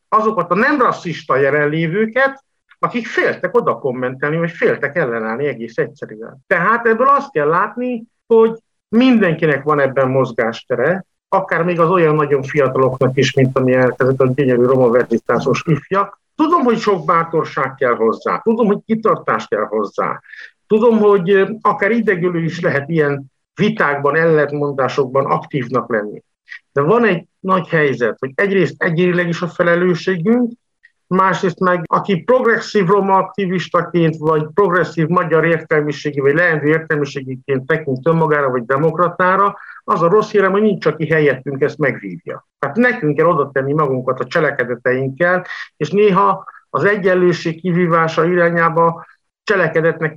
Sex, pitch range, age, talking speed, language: male, 145-200 Hz, 60-79, 135 wpm, Hungarian